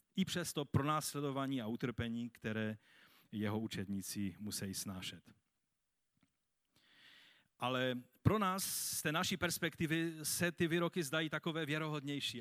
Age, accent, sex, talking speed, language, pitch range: 40-59, native, male, 115 wpm, Czech, 115-145 Hz